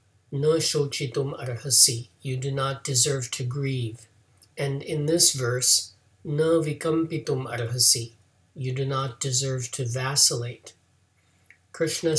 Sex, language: male, English